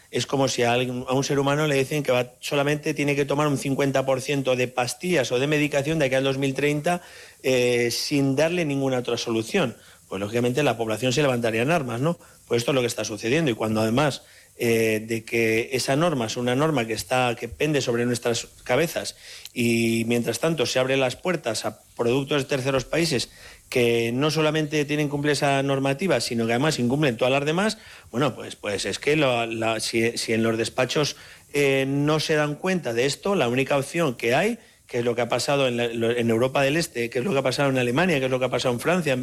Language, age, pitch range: Spanish, 40-59, 120-150 Hz